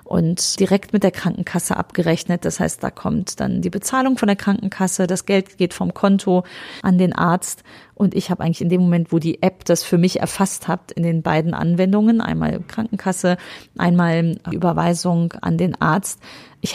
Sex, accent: female, German